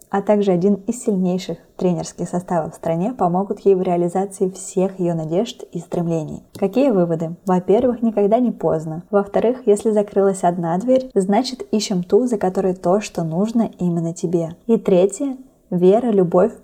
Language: Russian